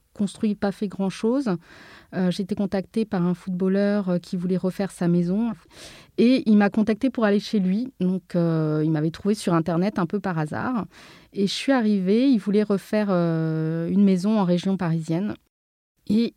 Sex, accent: female, French